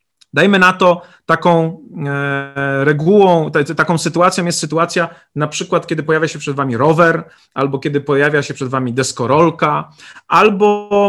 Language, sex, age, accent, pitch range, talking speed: Polish, male, 40-59, native, 145-190 Hz, 135 wpm